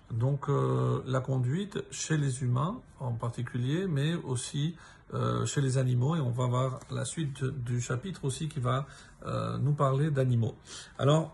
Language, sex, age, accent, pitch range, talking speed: French, male, 50-69, French, 130-160 Hz, 165 wpm